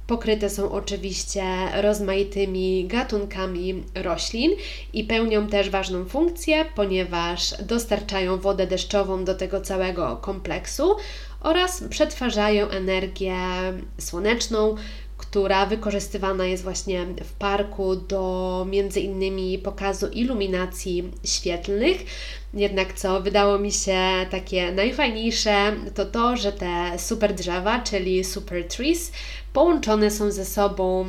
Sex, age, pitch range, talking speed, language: female, 20-39, 185-210 Hz, 105 wpm, Polish